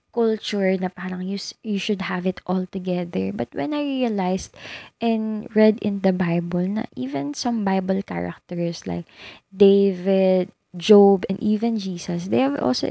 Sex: female